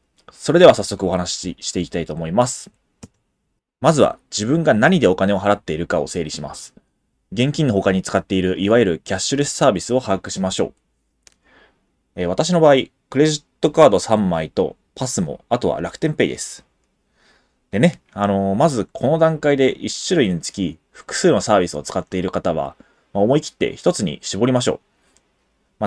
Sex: male